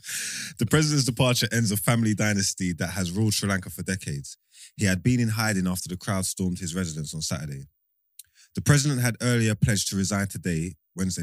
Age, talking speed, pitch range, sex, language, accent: 20-39, 190 wpm, 85-110 Hz, male, English, British